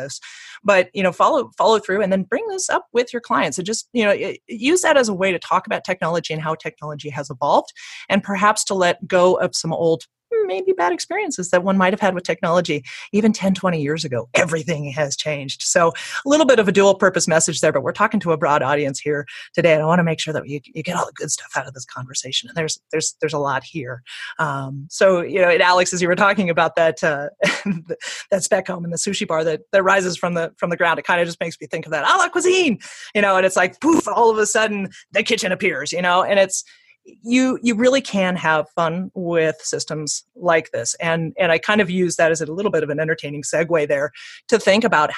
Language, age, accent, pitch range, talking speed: English, 30-49, American, 160-210 Hz, 250 wpm